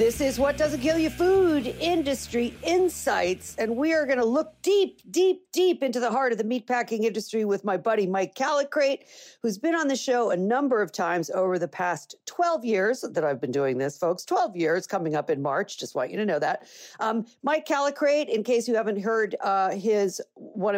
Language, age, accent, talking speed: English, 50-69, American, 210 wpm